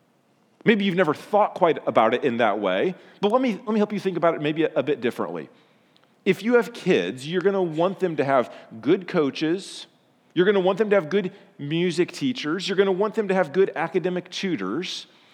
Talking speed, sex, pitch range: 225 wpm, male, 155-200 Hz